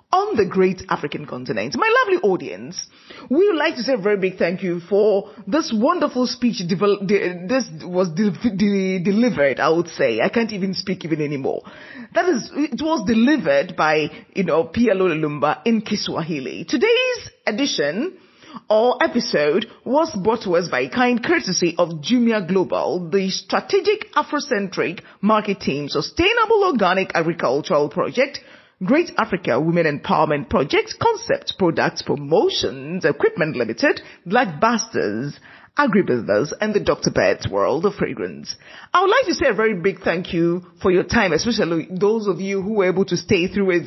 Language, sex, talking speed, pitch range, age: English, female, 160 wpm, 180-295 Hz, 30-49